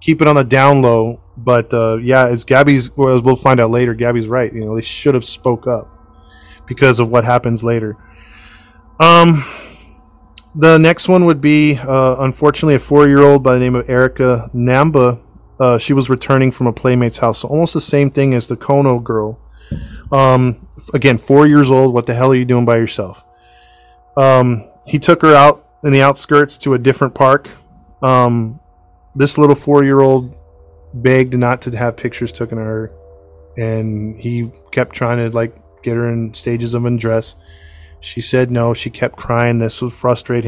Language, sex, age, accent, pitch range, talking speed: English, male, 20-39, American, 110-135 Hz, 185 wpm